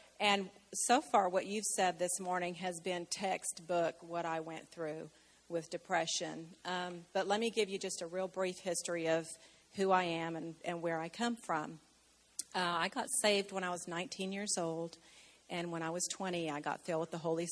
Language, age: English, 40-59